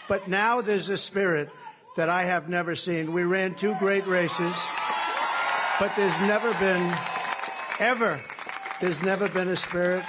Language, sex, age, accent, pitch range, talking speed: English, male, 60-79, American, 165-200 Hz, 150 wpm